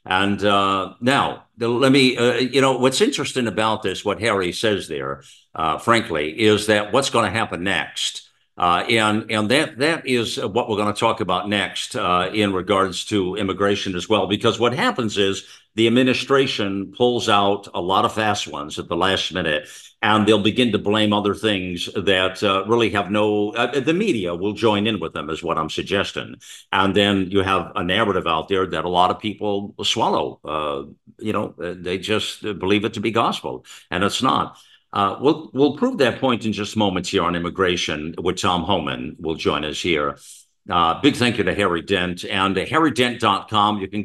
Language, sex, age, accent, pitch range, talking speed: English, male, 50-69, American, 95-115 Hz, 195 wpm